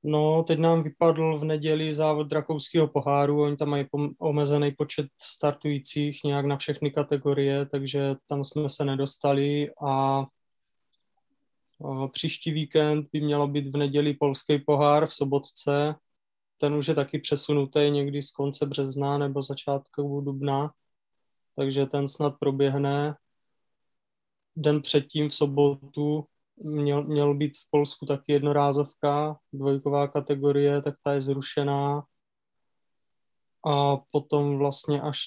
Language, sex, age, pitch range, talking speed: Czech, male, 20-39, 140-150 Hz, 130 wpm